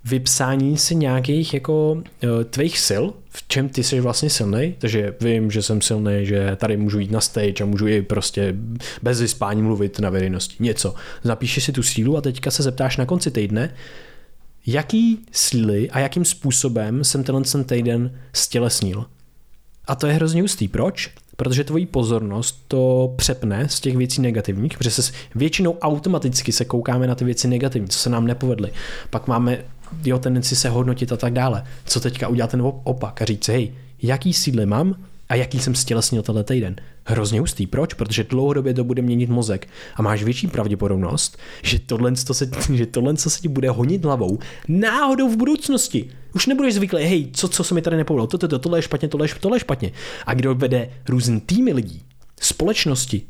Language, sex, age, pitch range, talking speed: Czech, male, 20-39, 115-145 Hz, 180 wpm